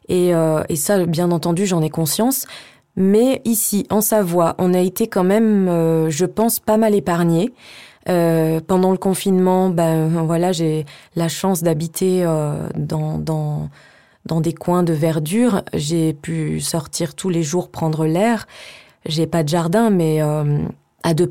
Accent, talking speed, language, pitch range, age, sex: French, 165 wpm, French, 165-195 Hz, 20-39, female